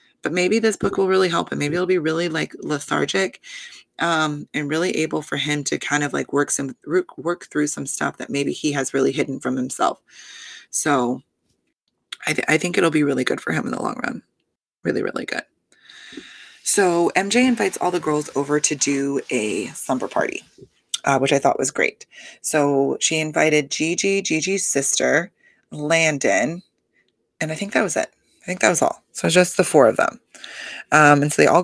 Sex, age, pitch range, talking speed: female, 20-39, 145-175 Hz, 200 wpm